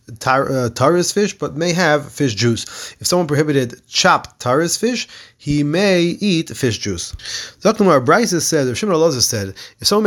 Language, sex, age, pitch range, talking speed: English, male, 30-49, 130-170 Hz, 165 wpm